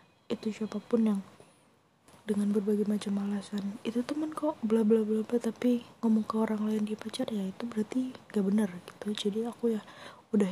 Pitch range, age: 200-235 Hz, 20-39